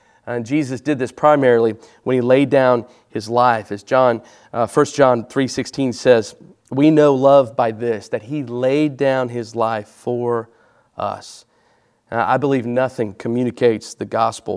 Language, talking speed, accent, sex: English, 155 wpm, American, male